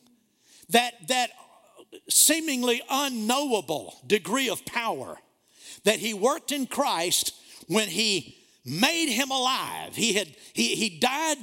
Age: 50-69